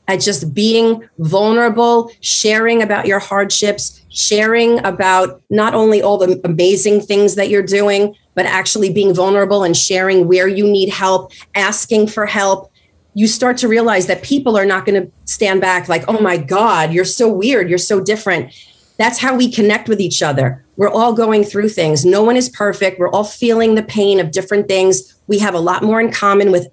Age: 30-49